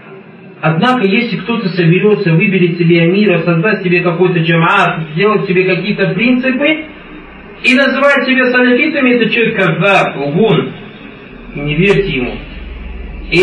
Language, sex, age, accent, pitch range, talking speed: Russian, male, 40-59, native, 160-205 Hz, 115 wpm